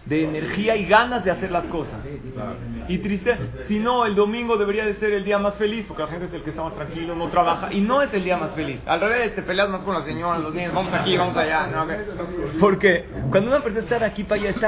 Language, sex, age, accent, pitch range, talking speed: Spanish, male, 40-59, Mexican, 145-190 Hz, 260 wpm